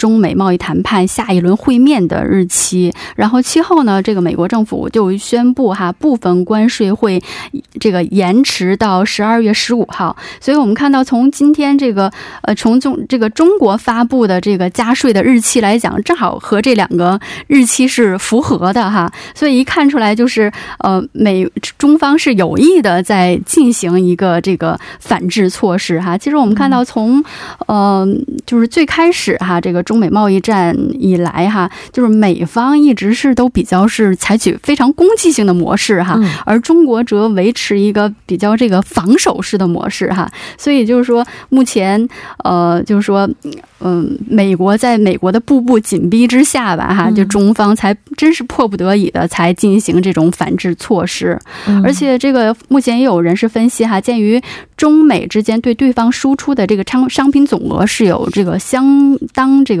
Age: 20-39